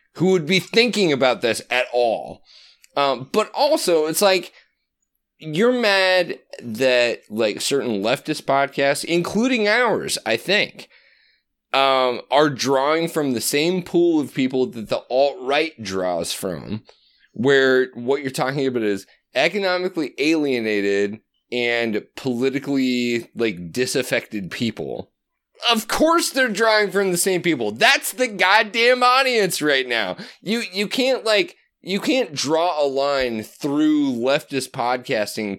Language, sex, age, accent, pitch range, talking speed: English, male, 30-49, American, 130-190 Hz, 130 wpm